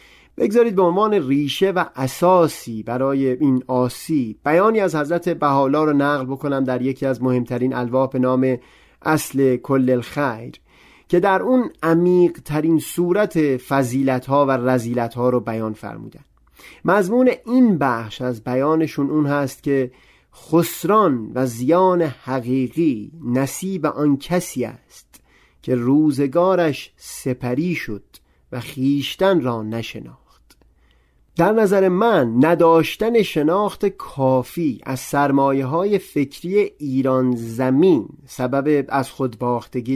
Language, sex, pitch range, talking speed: Persian, male, 125-165 Hz, 120 wpm